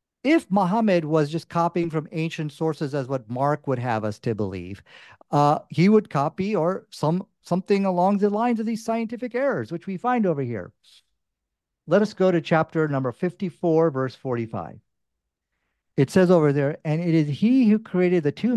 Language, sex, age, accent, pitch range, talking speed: English, male, 50-69, American, 135-190 Hz, 180 wpm